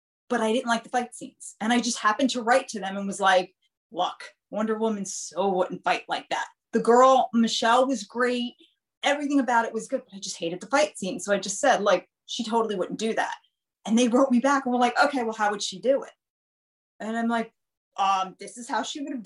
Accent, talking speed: American, 245 wpm